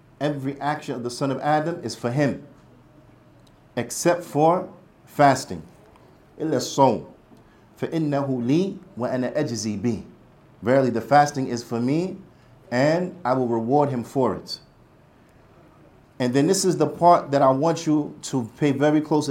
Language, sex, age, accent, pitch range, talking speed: English, male, 50-69, American, 125-155 Hz, 125 wpm